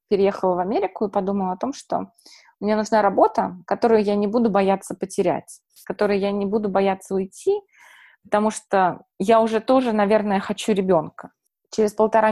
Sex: female